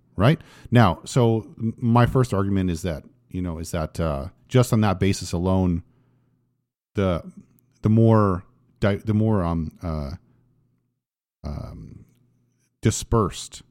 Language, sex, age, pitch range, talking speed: English, male, 40-59, 90-115 Hz, 125 wpm